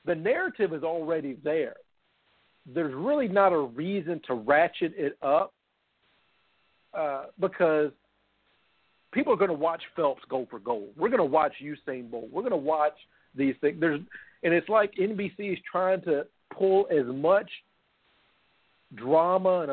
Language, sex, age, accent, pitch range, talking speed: English, male, 50-69, American, 140-190 Hz, 150 wpm